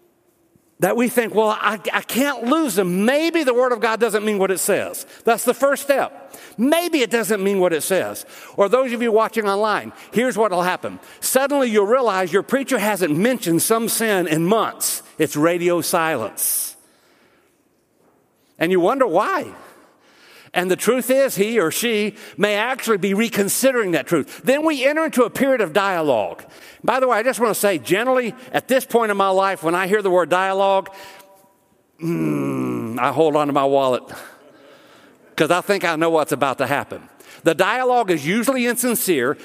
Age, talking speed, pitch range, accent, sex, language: 60-79, 185 wpm, 185-250 Hz, American, male, English